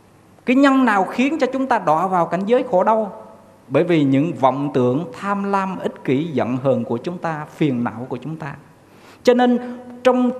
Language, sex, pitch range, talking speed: Vietnamese, male, 145-220 Hz, 200 wpm